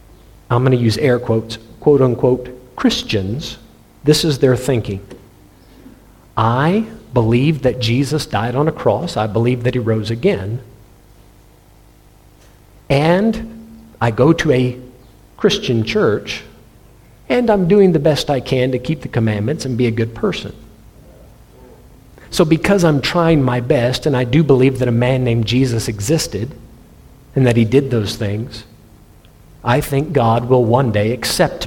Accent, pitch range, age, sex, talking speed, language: American, 110-145 Hz, 50-69, male, 150 wpm, English